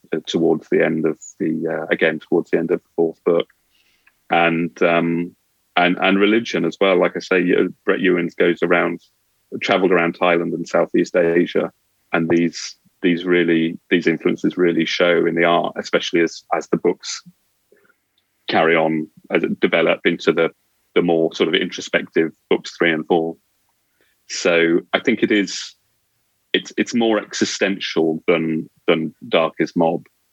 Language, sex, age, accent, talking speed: English, male, 30-49, British, 160 wpm